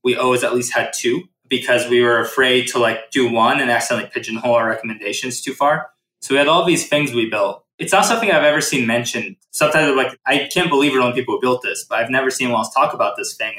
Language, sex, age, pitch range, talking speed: English, male, 20-39, 120-145 Hz, 250 wpm